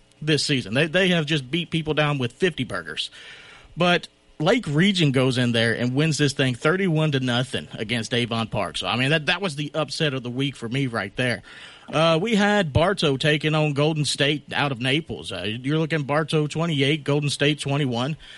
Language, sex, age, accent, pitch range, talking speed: English, male, 40-59, American, 130-165 Hz, 205 wpm